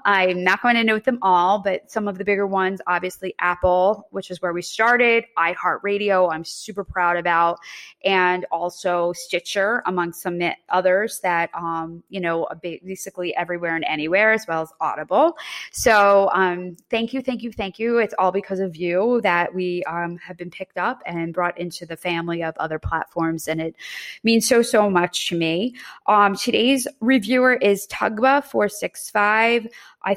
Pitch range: 175-230 Hz